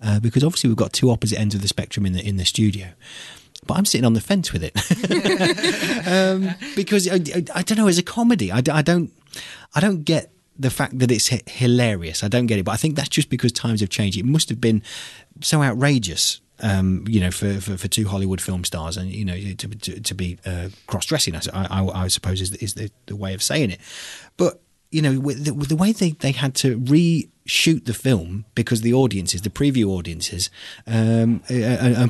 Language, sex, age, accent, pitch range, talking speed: English, male, 30-49, British, 105-165 Hz, 215 wpm